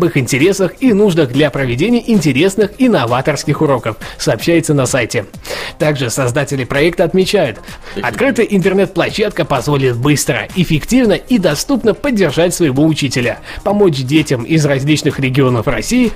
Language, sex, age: Russian, male, 20-39